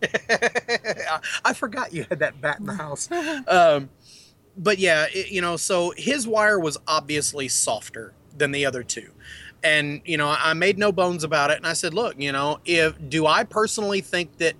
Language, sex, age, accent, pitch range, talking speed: English, male, 30-49, American, 150-185 Hz, 180 wpm